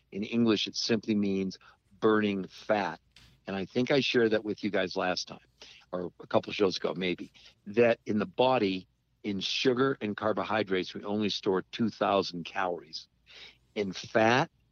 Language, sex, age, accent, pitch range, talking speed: English, male, 50-69, American, 100-125 Hz, 165 wpm